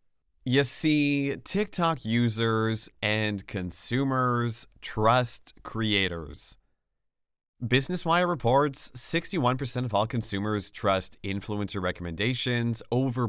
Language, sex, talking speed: English, male, 80 wpm